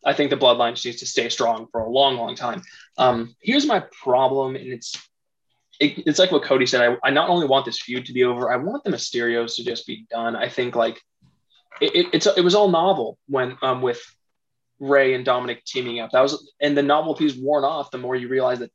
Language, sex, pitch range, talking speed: English, male, 120-150 Hz, 240 wpm